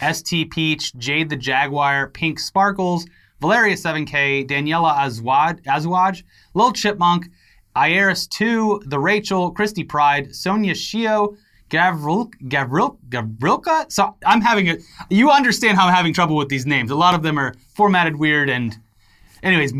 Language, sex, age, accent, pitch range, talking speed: English, male, 30-49, American, 140-185 Hz, 135 wpm